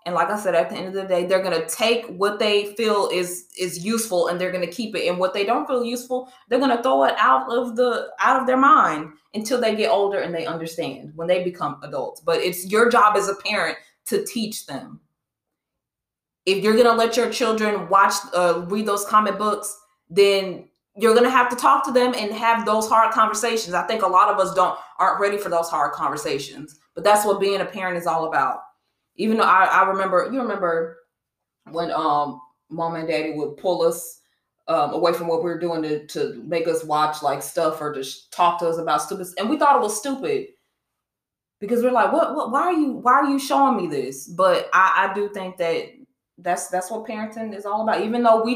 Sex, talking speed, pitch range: female, 225 wpm, 170-225 Hz